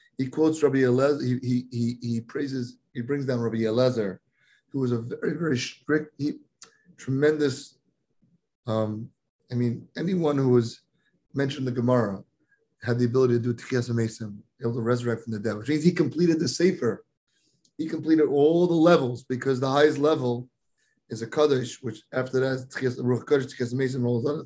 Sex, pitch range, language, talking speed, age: male, 120-145 Hz, English, 175 wpm, 30-49